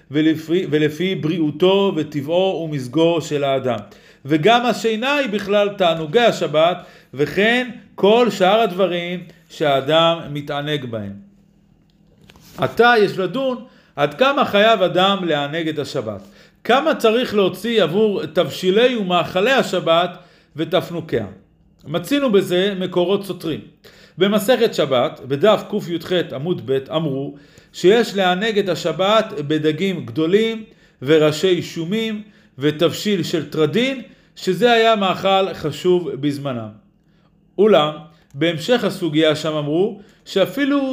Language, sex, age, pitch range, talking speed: Hebrew, male, 50-69, 160-210 Hz, 105 wpm